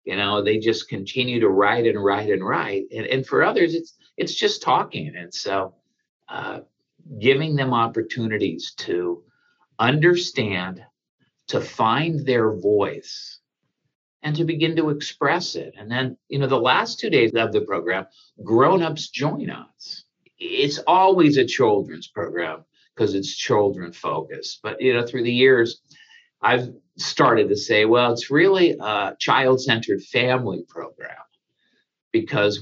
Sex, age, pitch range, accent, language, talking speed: male, 50-69, 115-175 Hz, American, English, 140 wpm